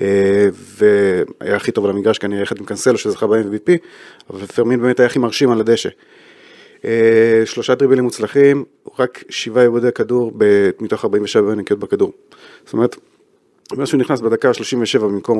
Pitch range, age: 105-165 Hz, 30-49